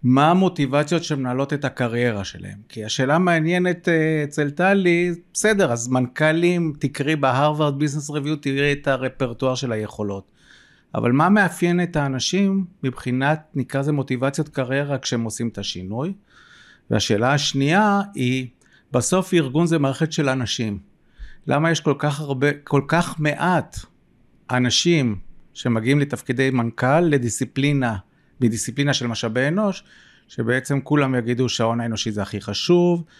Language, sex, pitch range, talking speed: Hebrew, male, 115-155 Hz, 130 wpm